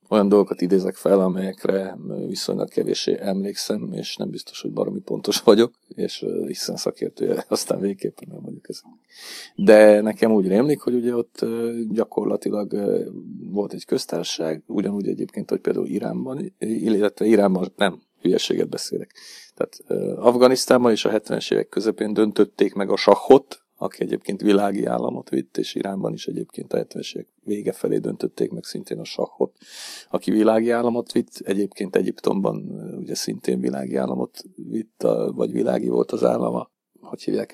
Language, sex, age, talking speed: Hungarian, male, 40-59, 145 wpm